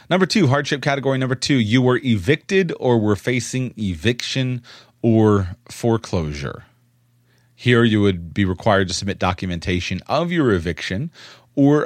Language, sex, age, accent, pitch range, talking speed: English, male, 30-49, American, 90-120 Hz, 135 wpm